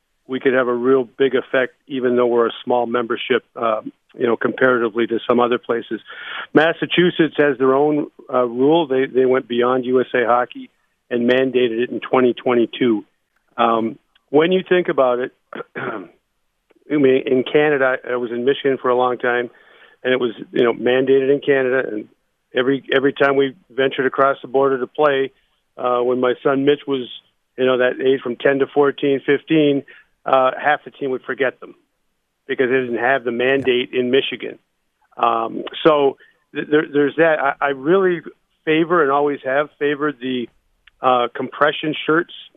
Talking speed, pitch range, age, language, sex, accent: 170 wpm, 125-145 Hz, 50-69, English, male, American